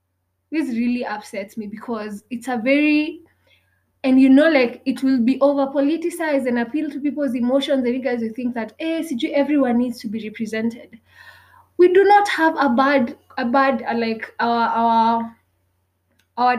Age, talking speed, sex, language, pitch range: 20-39, 175 wpm, female, English, 205-270 Hz